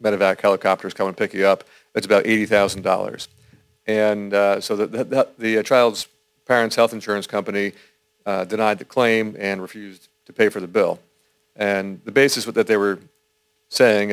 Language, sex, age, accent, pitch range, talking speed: English, male, 40-59, American, 100-110 Hz, 170 wpm